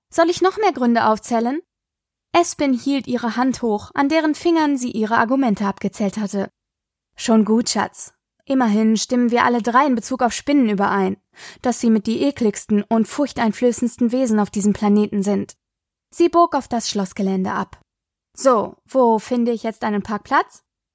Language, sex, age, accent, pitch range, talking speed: German, female, 20-39, German, 215-280 Hz, 165 wpm